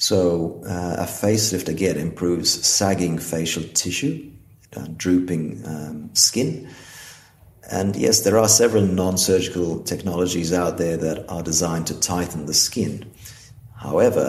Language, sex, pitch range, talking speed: English, male, 80-95 Hz, 125 wpm